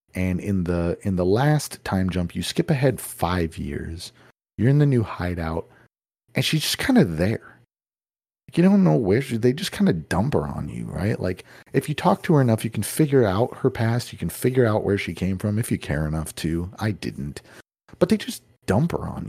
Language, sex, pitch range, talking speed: English, male, 90-135 Hz, 225 wpm